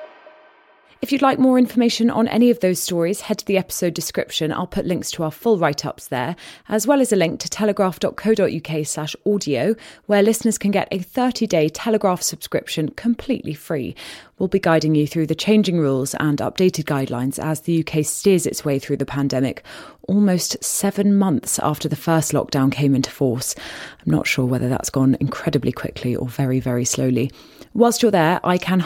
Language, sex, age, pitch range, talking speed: English, female, 20-39, 140-190 Hz, 185 wpm